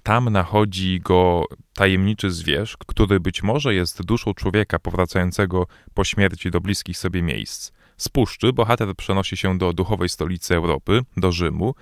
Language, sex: Polish, male